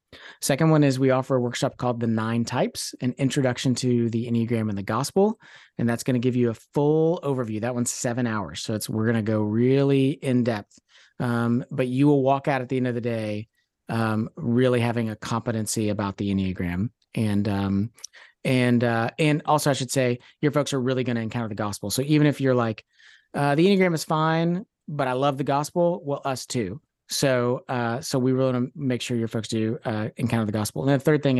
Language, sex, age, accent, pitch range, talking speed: English, male, 30-49, American, 115-145 Hz, 225 wpm